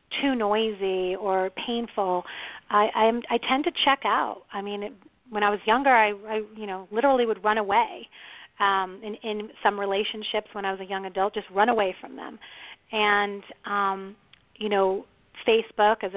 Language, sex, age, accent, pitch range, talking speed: English, female, 30-49, American, 195-230 Hz, 180 wpm